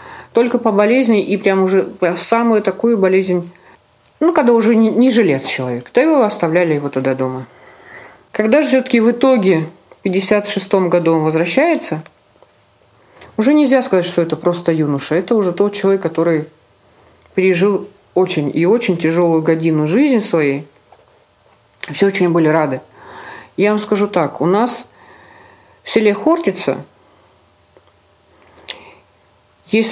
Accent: native